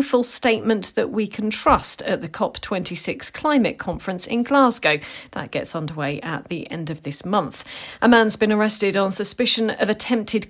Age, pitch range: 40-59, 175-225 Hz